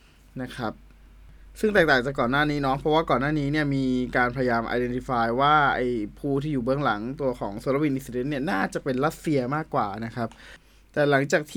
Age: 20-39